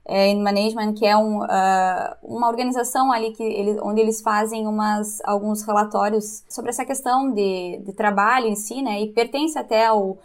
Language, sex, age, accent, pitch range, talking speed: Portuguese, female, 10-29, Brazilian, 210-260 Hz, 180 wpm